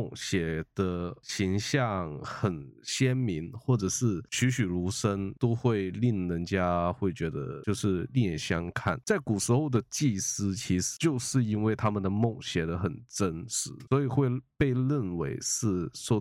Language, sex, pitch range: Chinese, male, 95-125 Hz